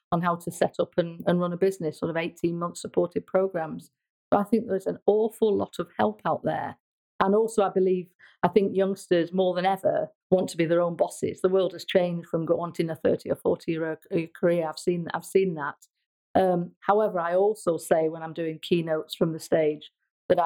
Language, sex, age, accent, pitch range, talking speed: English, female, 50-69, British, 170-190 Hz, 210 wpm